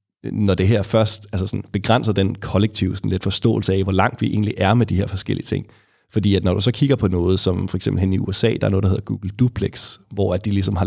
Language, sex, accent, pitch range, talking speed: Danish, male, native, 95-110 Hz, 265 wpm